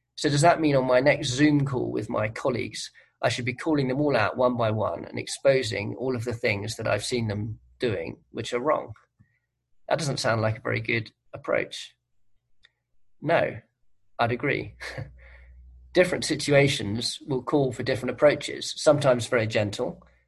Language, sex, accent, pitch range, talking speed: English, male, British, 105-135 Hz, 170 wpm